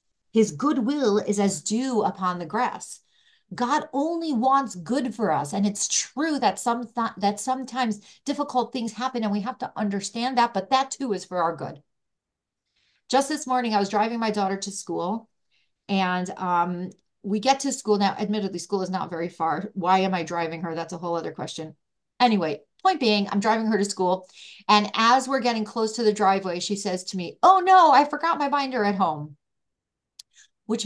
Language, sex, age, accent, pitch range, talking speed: English, female, 40-59, American, 195-260 Hz, 190 wpm